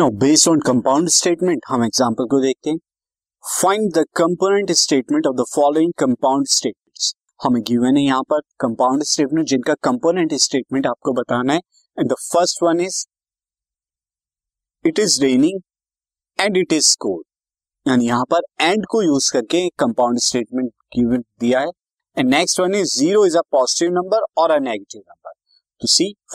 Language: Hindi